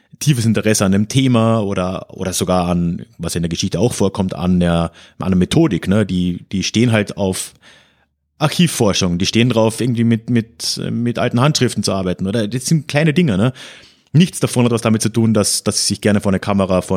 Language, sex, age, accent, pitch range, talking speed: German, male, 30-49, German, 95-125 Hz, 210 wpm